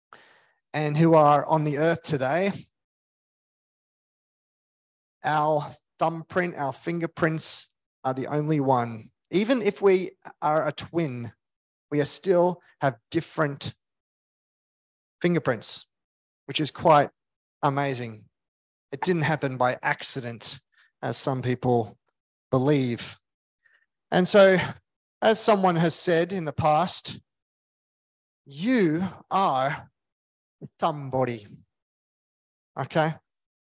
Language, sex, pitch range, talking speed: English, male, 130-175 Hz, 95 wpm